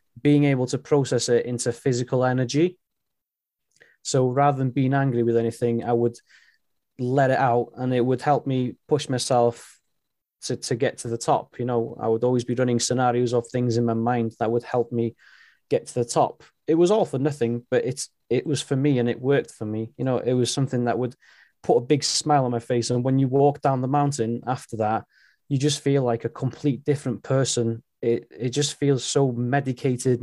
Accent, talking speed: British, 210 wpm